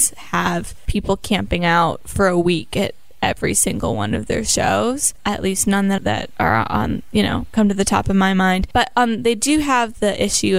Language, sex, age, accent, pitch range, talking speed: English, female, 10-29, American, 175-225 Hz, 210 wpm